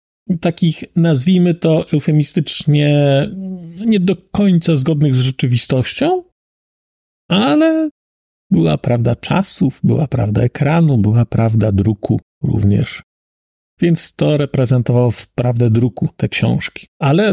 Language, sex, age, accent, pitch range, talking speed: Polish, male, 40-59, native, 130-170 Hz, 105 wpm